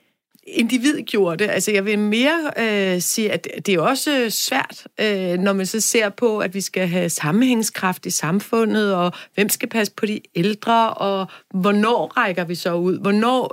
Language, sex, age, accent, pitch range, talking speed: Danish, female, 30-49, native, 195-235 Hz, 180 wpm